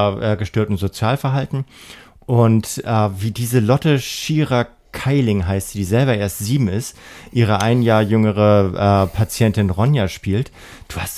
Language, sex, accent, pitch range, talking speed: German, male, German, 105-135 Hz, 135 wpm